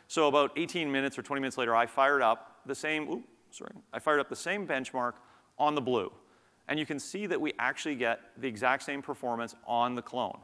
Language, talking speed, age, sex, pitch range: English, 225 wpm, 40-59, male, 120-160 Hz